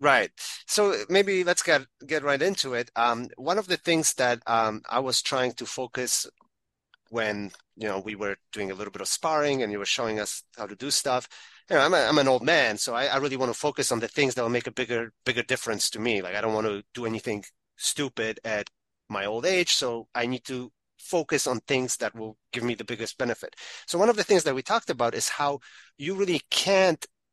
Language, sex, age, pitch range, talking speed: English, male, 30-49, 110-145 Hz, 235 wpm